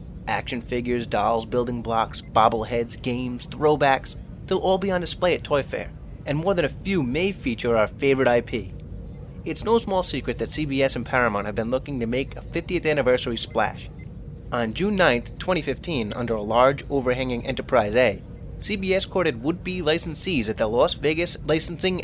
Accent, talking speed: American, 170 wpm